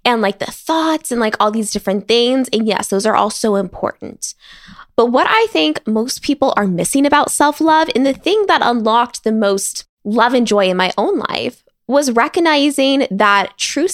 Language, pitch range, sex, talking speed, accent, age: English, 200-285 Hz, female, 195 wpm, American, 10-29